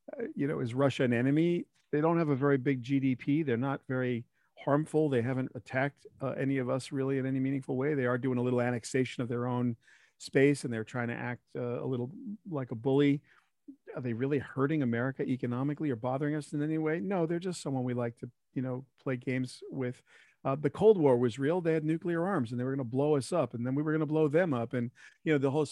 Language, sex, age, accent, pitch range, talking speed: English, male, 50-69, American, 125-155 Hz, 245 wpm